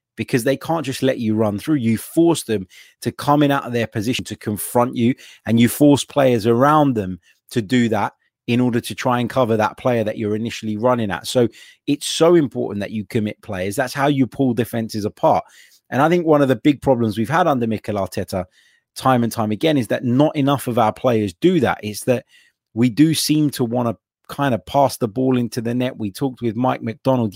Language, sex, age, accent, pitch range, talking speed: English, male, 30-49, British, 115-130 Hz, 230 wpm